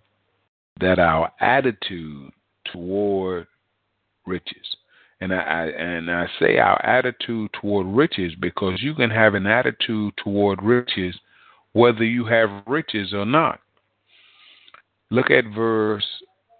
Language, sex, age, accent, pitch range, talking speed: English, male, 40-59, American, 95-120 Hz, 115 wpm